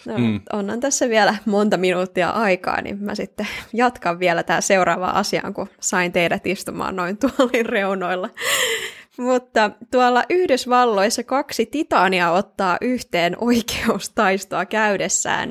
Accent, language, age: native, Finnish, 20-39